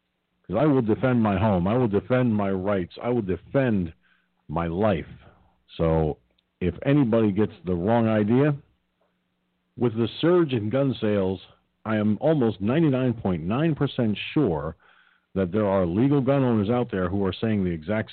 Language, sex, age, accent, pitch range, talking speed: English, male, 50-69, American, 90-125 Hz, 155 wpm